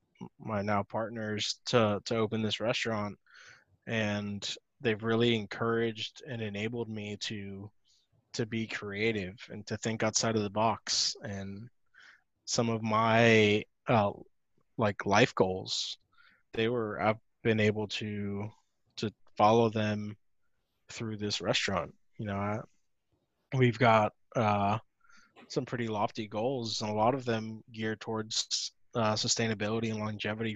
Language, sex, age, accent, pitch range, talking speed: English, male, 20-39, American, 105-115 Hz, 130 wpm